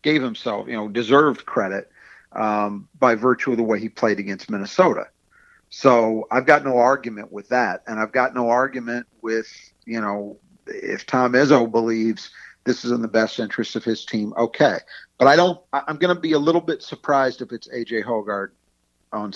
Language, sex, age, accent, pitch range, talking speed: English, male, 50-69, American, 110-135 Hz, 190 wpm